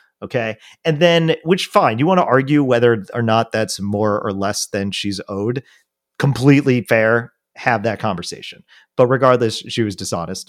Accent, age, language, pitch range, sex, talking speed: American, 30-49, English, 120-175 Hz, male, 165 wpm